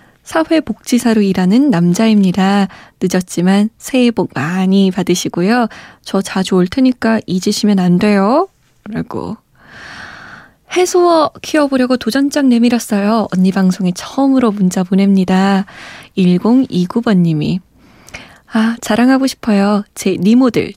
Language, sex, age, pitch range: Korean, female, 20-39, 185-245 Hz